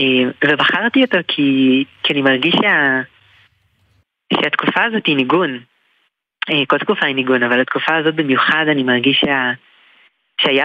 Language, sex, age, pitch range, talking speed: Hebrew, female, 20-39, 130-155 Hz, 130 wpm